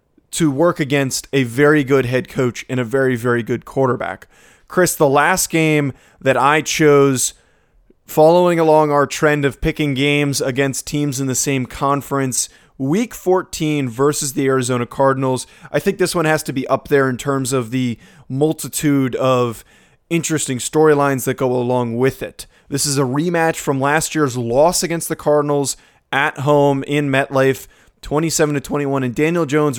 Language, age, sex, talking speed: English, 20-39, male, 165 wpm